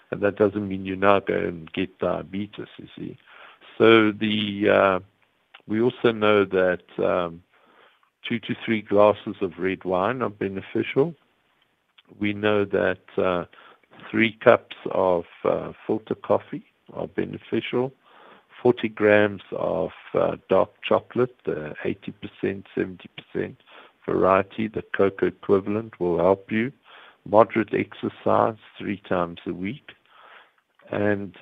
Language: English